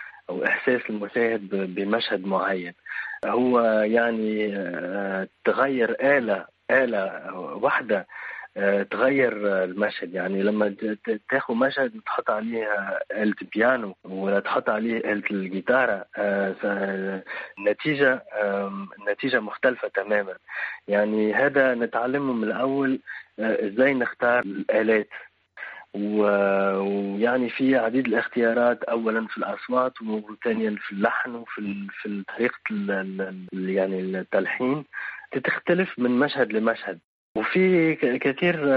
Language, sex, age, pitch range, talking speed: Arabic, male, 30-49, 100-120 Hz, 90 wpm